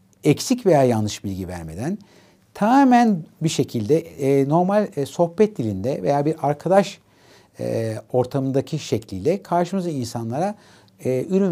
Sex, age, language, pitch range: male, 60-79, Turkish, 110-175 Hz